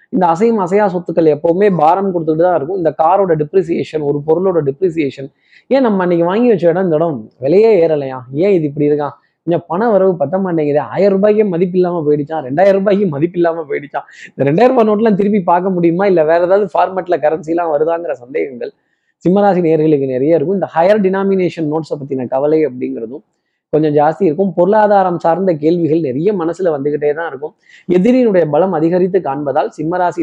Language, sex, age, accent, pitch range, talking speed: Tamil, male, 20-39, native, 155-195 Hz, 155 wpm